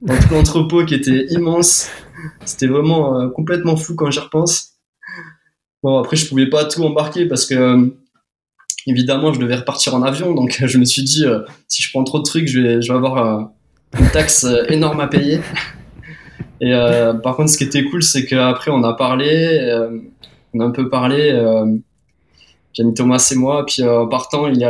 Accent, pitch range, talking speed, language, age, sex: French, 120-145 Hz, 195 wpm, French, 20-39, male